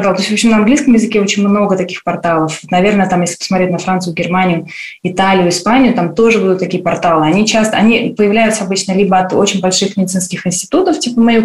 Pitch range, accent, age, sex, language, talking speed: 175-220 Hz, native, 20-39, female, Russian, 200 wpm